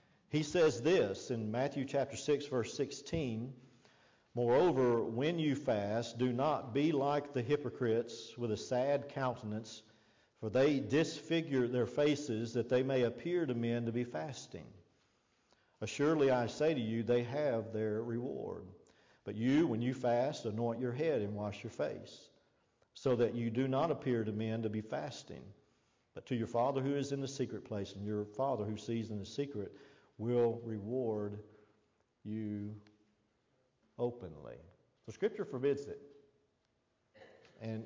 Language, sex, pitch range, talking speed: English, male, 110-145 Hz, 150 wpm